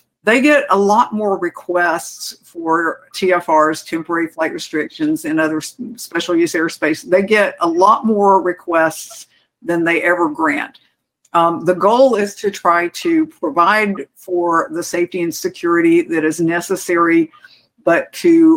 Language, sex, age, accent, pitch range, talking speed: English, female, 60-79, American, 170-210 Hz, 140 wpm